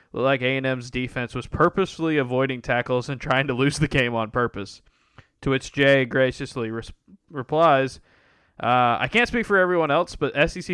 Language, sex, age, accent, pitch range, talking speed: English, male, 20-39, American, 115-140 Hz, 170 wpm